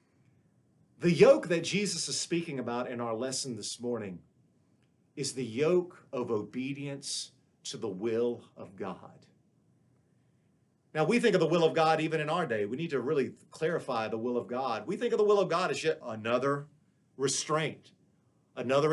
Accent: American